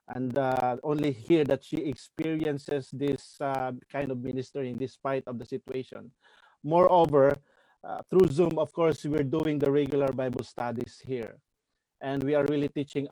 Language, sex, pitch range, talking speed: English, male, 130-145 Hz, 155 wpm